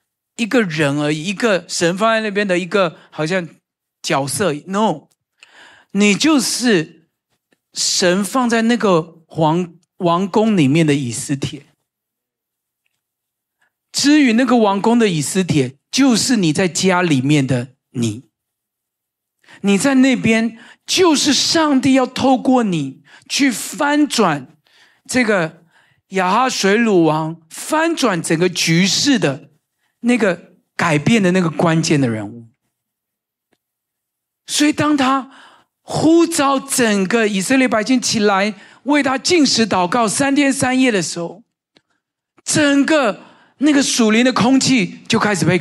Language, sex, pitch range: Chinese, male, 170-270 Hz